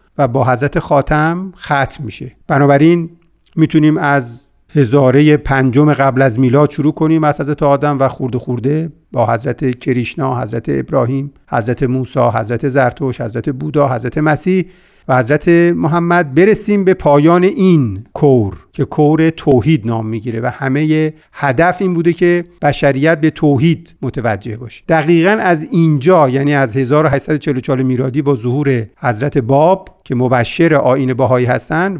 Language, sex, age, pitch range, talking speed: Persian, male, 50-69, 135-170 Hz, 140 wpm